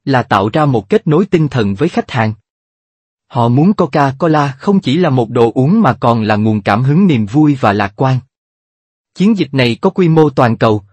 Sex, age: male, 30-49